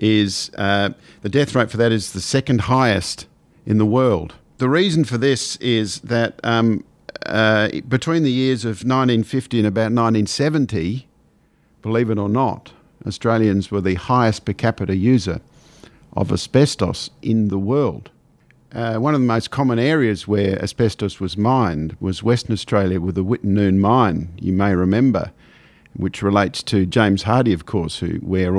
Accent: Australian